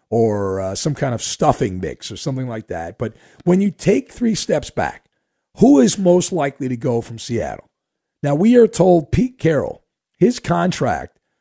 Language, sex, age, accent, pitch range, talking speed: English, male, 50-69, American, 125-175 Hz, 180 wpm